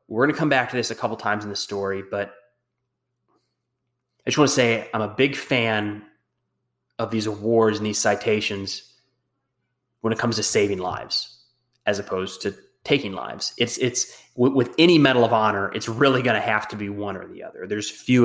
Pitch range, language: 105-140 Hz, English